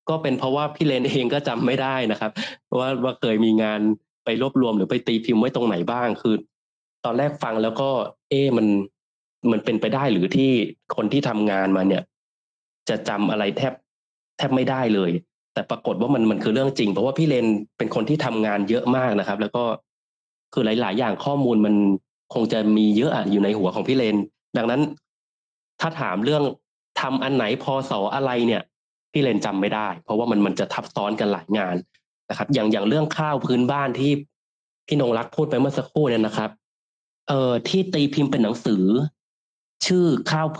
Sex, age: male, 20-39